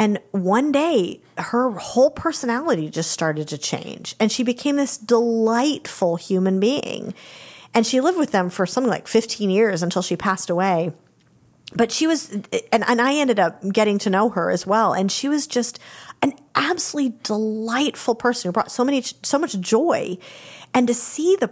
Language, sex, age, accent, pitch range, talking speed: English, female, 40-59, American, 190-255 Hz, 180 wpm